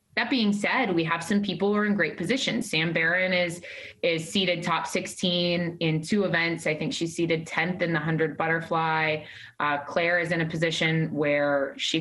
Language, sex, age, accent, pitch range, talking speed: English, female, 20-39, American, 160-195 Hz, 195 wpm